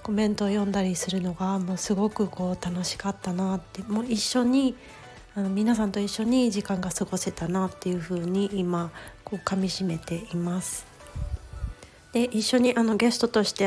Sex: female